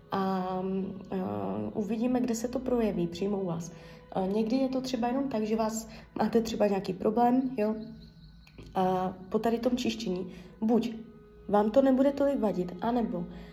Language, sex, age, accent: Czech, female, 20-39, native